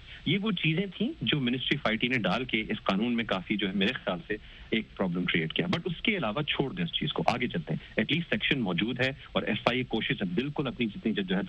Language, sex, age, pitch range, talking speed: Urdu, male, 40-59, 115-180 Hz, 255 wpm